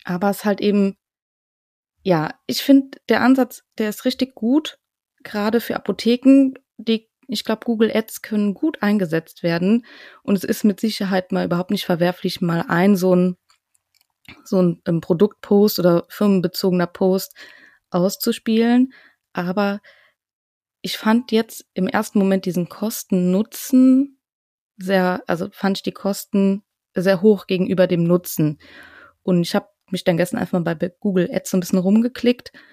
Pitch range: 185-225 Hz